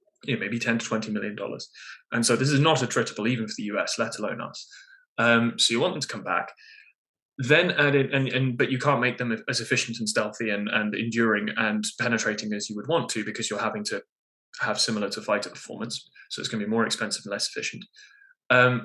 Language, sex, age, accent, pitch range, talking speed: English, male, 20-39, British, 110-140 Hz, 230 wpm